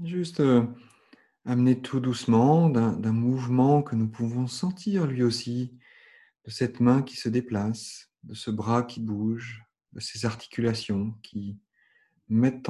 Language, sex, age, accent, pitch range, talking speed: French, male, 40-59, French, 100-125 Hz, 135 wpm